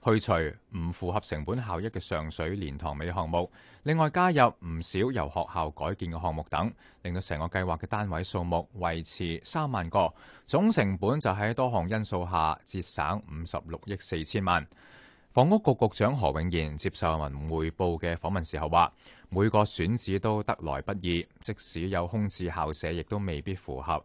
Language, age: Chinese, 30-49